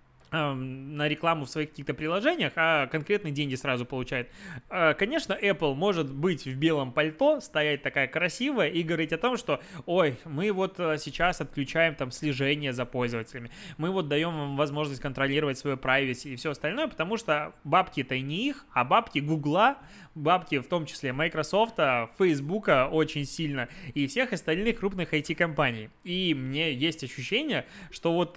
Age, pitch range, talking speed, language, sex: 20-39, 135-170 Hz, 155 wpm, Russian, male